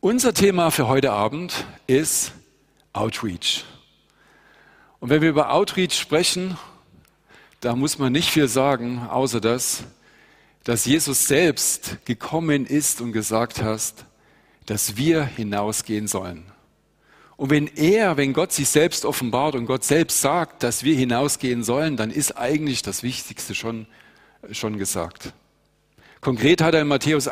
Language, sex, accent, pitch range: German, male, German, 120-155 Hz